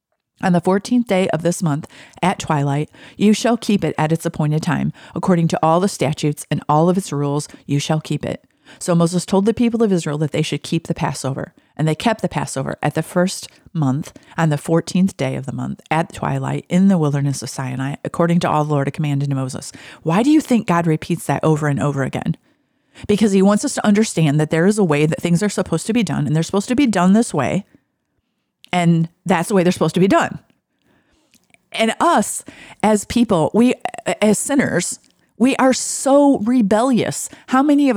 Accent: American